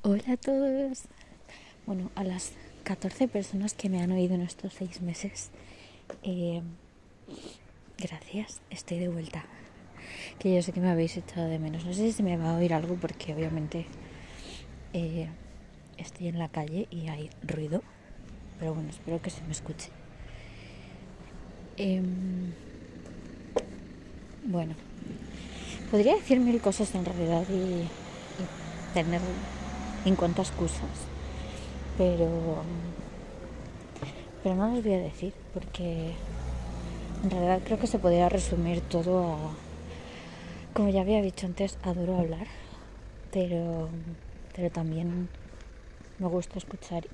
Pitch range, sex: 160-185 Hz, female